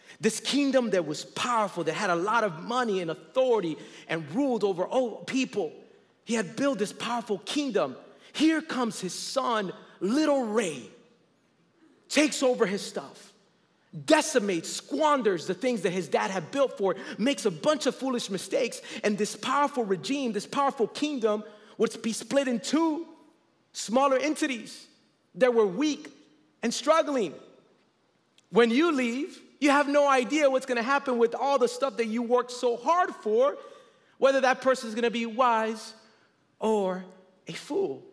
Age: 30-49